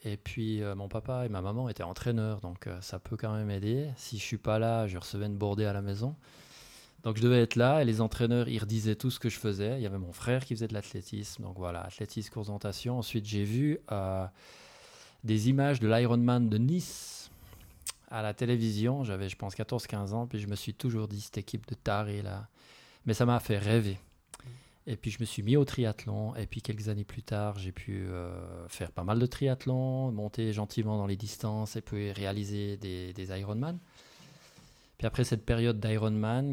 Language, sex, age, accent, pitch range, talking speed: French, male, 20-39, French, 100-120 Hz, 215 wpm